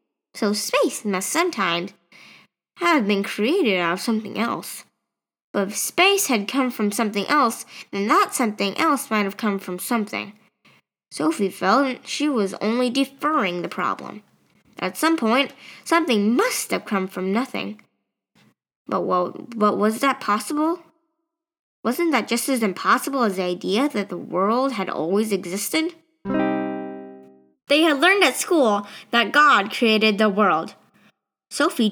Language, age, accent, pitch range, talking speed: English, 10-29, American, 195-275 Hz, 140 wpm